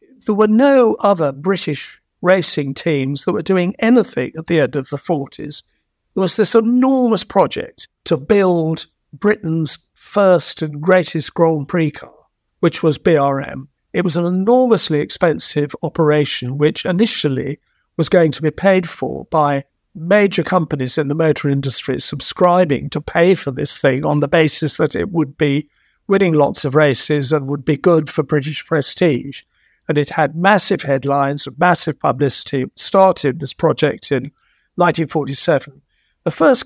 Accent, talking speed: British, 155 wpm